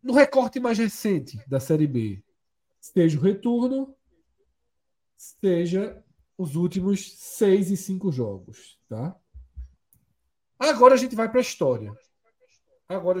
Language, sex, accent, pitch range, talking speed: Portuguese, male, Brazilian, 125-195 Hz, 120 wpm